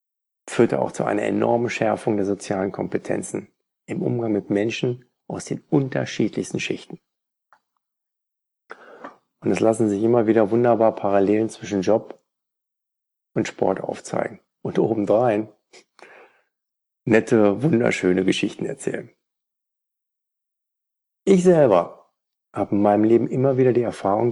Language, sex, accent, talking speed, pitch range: German, male, German, 115 wpm, 105-145 Hz